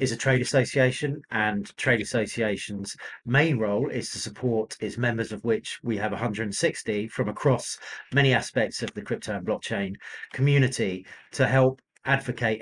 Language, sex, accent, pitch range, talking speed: English, male, British, 110-125 Hz, 150 wpm